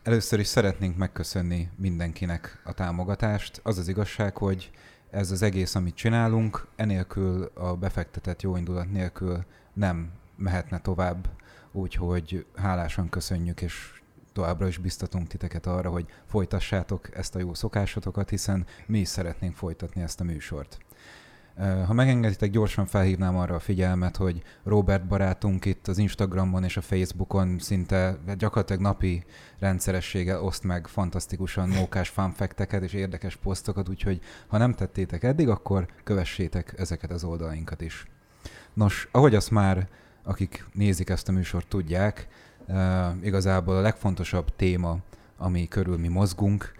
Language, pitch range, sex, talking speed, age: Hungarian, 90-100 Hz, male, 135 wpm, 30-49